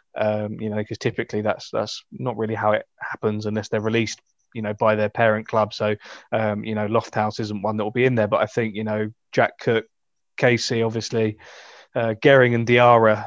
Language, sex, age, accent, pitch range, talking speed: English, male, 20-39, British, 105-120 Hz, 210 wpm